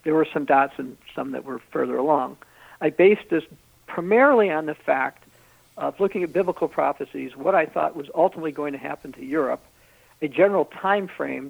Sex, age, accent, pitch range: male, 60-79, American, 145-175 Hz